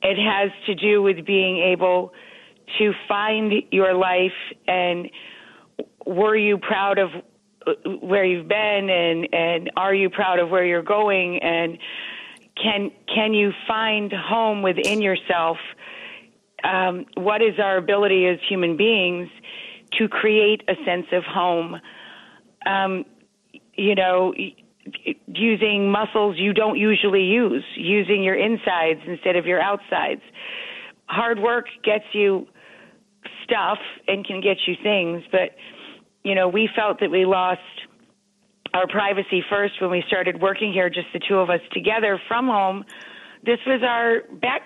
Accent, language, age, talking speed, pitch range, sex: American, English, 40-59, 140 wpm, 185-210 Hz, female